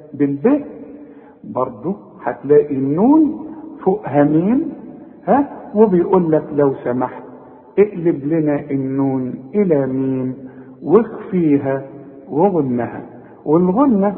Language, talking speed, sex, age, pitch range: Arabic, 80 wpm, male, 50-69, 140-205 Hz